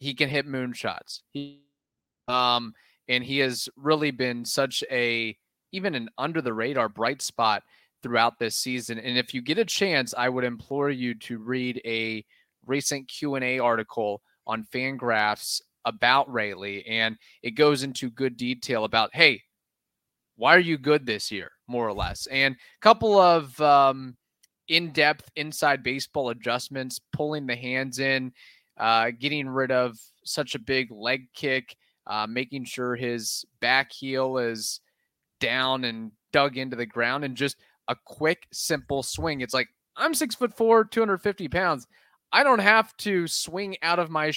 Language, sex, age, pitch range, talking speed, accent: English, male, 30-49, 125-155 Hz, 155 wpm, American